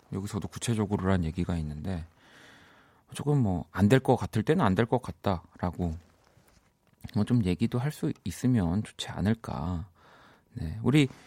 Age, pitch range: 40-59, 90-125 Hz